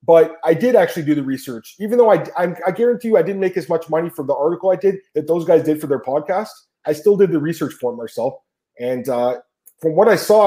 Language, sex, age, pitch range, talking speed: English, male, 30-49, 150-190 Hz, 260 wpm